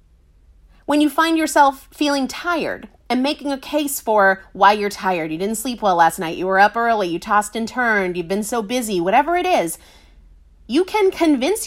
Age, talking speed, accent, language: 30-49, 195 wpm, American, English